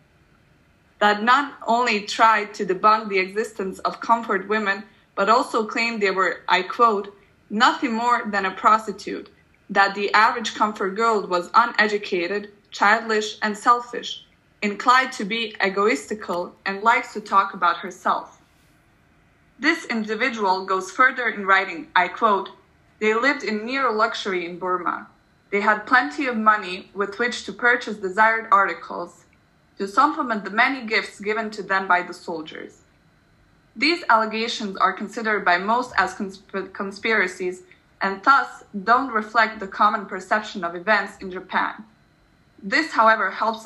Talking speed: 140 wpm